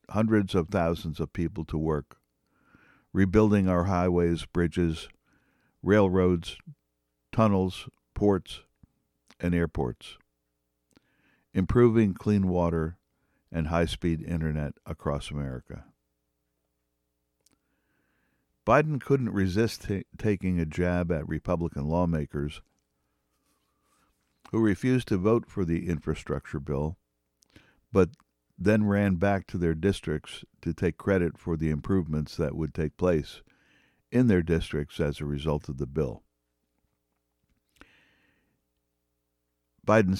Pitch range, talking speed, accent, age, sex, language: 75-100 Hz, 100 wpm, American, 60-79, male, English